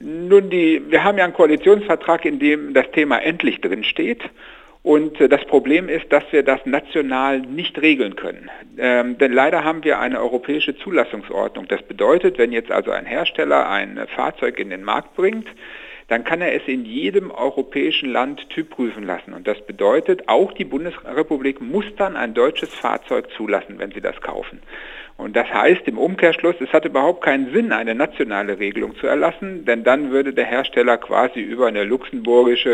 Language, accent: German, German